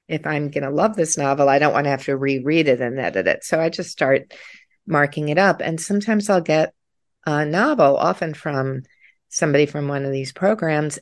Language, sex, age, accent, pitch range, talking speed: English, female, 50-69, American, 125-155 Hz, 210 wpm